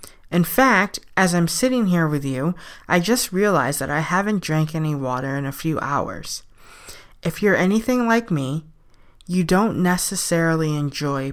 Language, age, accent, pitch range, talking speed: English, 20-39, American, 145-195 Hz, 160 wpm